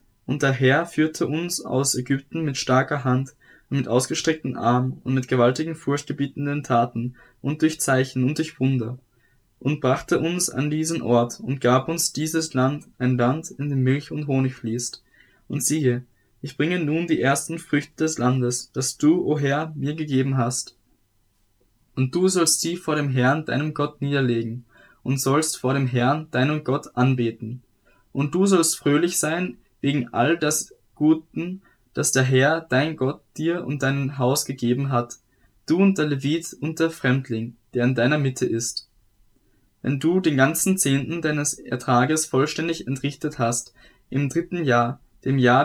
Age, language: 10-29, German